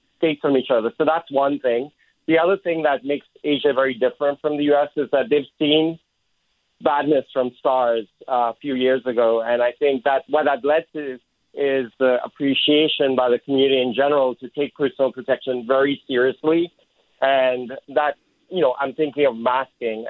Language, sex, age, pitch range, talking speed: English, male, 40-59, 130-150 Hz, 185 wpm